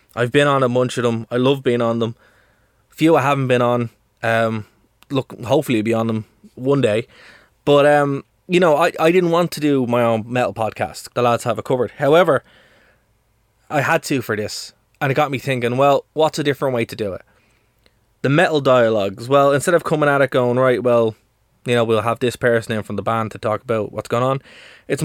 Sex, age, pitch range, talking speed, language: male, 20-39, 115-140 Hz, 225 wpm, English